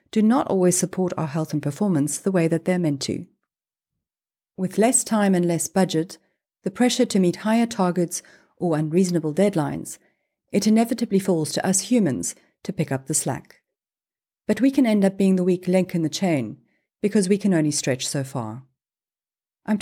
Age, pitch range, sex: 40-59, 155-210 Hz, female